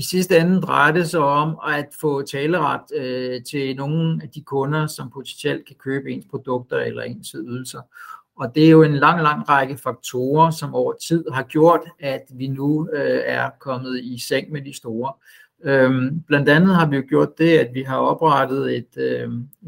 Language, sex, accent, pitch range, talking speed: Danish, male, native, 130-160 Hz, 190 wpm